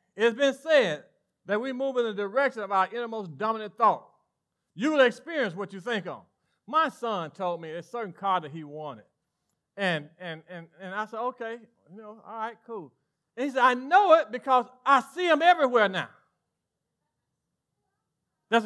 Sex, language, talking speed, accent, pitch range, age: male, English, 180 wpm, American, 190-285 Hz, 40-59